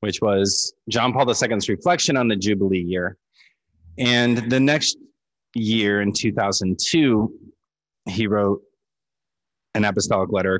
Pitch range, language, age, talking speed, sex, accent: 90-115 Hz, English, 20-39, 120 wpm, male, American